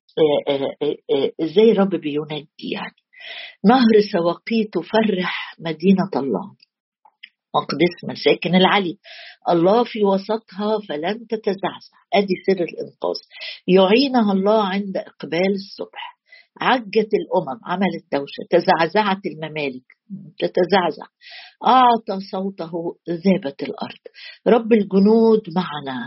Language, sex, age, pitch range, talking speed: Arabic, female, 50-69, 175-225 Hz, 100 wpm